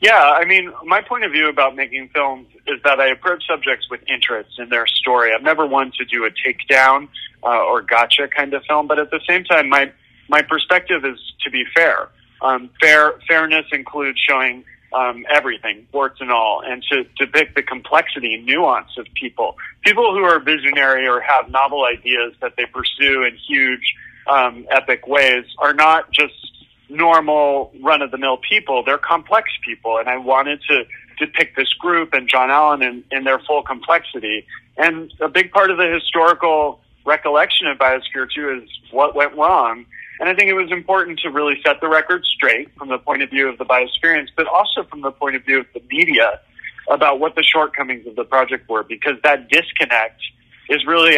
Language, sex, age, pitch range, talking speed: English, male, 30-49, 130-155 Hz, 190 wpm